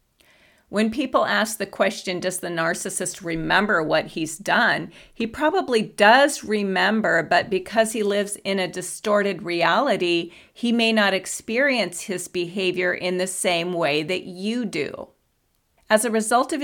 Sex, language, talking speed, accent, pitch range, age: female, English, 150 wpm, American, 170-225 Hz, 40-59